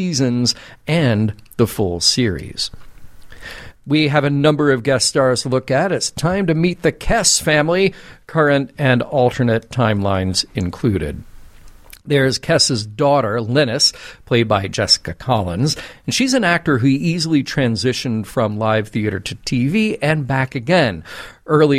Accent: American